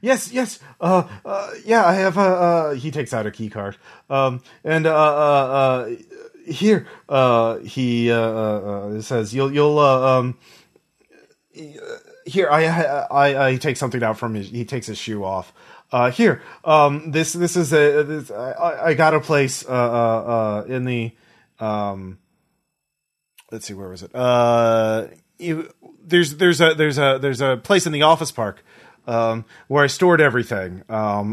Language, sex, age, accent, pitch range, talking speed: English, male, 30-49, American, 110-155 Hz, 170 wpm